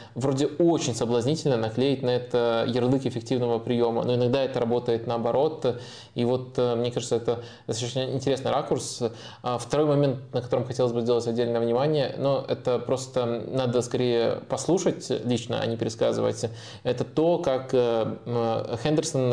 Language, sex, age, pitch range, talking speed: Russian, male, 20-39, 115-130 Hz, 140 wpm